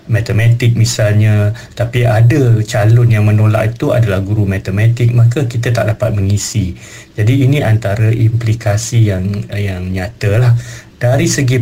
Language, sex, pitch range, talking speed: Malay, male, 105-120 Hz, 130 wpm